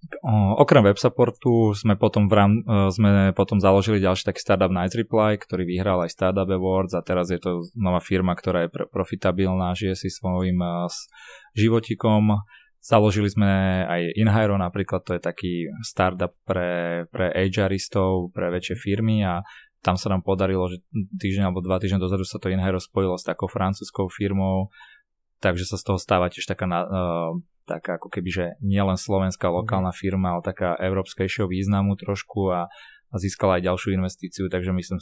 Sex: male